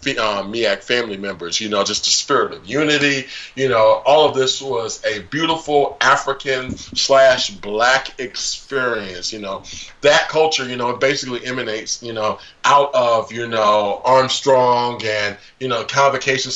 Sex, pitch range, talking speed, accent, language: male, 115-140 Hz, 150 wpm, American, English